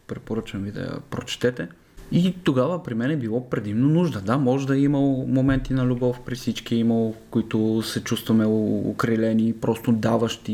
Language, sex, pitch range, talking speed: Bulgarian, male, 110-140 Hz, 175 wpm